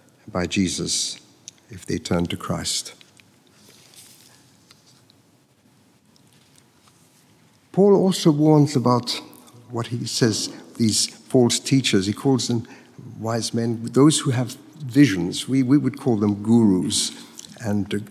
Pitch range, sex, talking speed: 110-145 Hz, male, 110 wpm